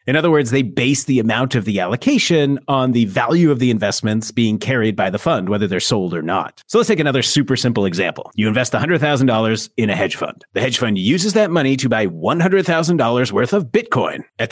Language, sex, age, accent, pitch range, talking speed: English, male, 30-49, American, 115-180 Hz, 220 wpm